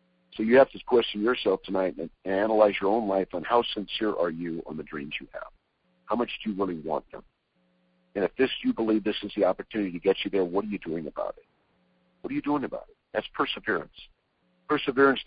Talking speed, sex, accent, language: 230 wpm, male, American, English